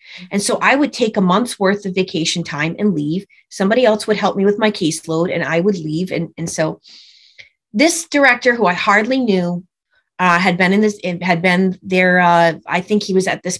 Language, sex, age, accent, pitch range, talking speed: English, female, 30-49, American, 170-220 Hz, 205 wpm